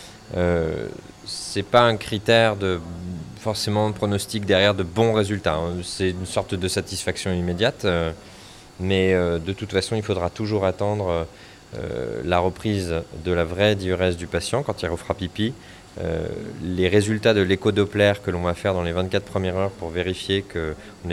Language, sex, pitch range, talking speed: French, male, 90-110 Hz, 170 wpm